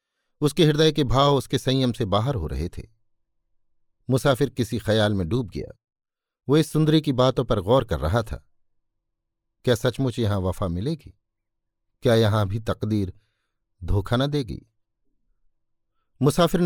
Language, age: Hindi, 50-69